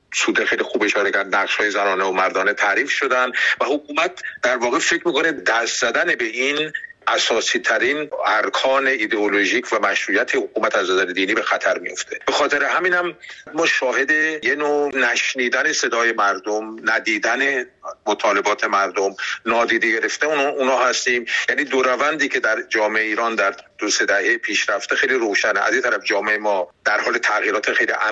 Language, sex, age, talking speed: Persian, male, 50-69, 155 wpm